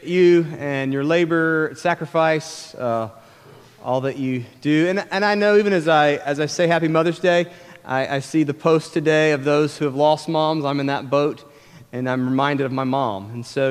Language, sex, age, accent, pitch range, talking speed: English, male, 30-49, American, 130-165 Hz, 205 wpm